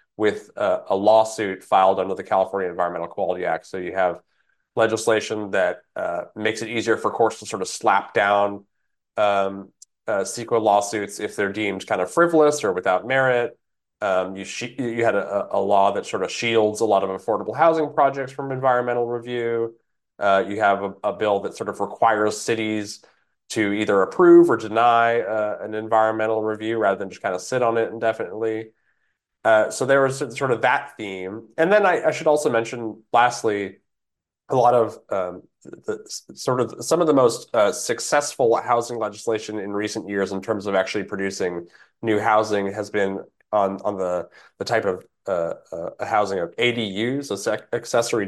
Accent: American